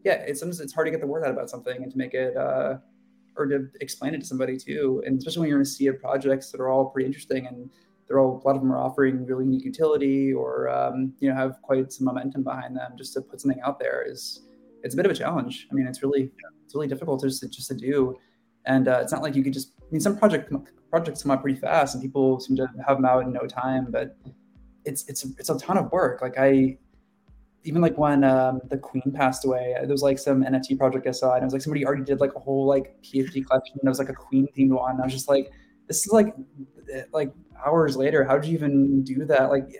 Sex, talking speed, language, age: male, 265 wpm, English, 20-39